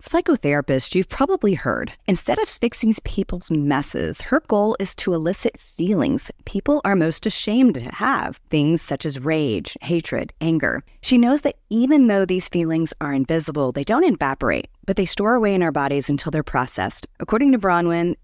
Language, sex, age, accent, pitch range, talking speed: English, female, 30-49, American, 150-220 Hz, 170 wpm